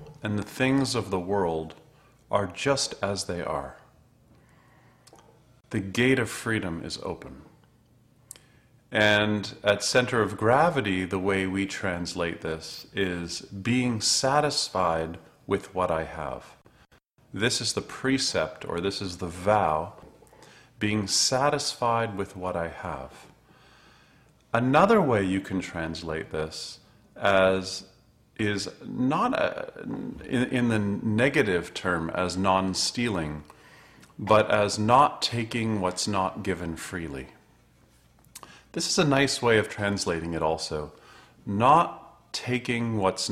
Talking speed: 120 wpm